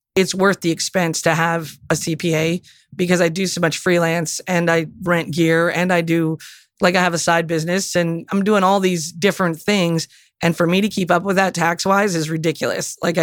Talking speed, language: 215 wpm, English